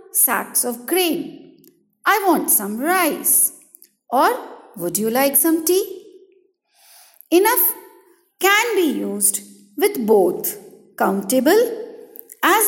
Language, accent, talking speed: English, Indian, 100 wpm